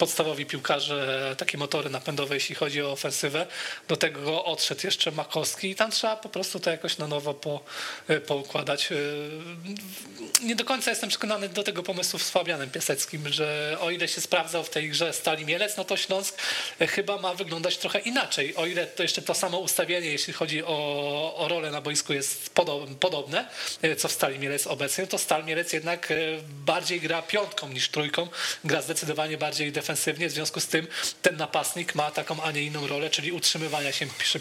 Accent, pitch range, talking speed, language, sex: native, 150-180 Hz, 180 wpm, Polish, male